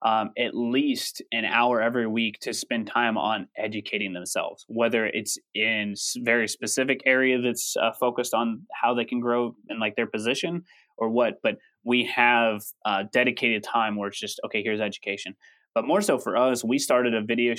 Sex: male